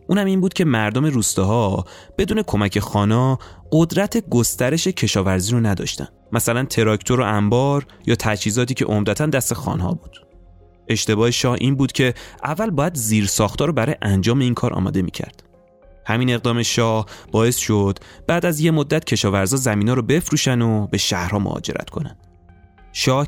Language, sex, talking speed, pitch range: Persian, male, 155 wpm, 100-135 Hz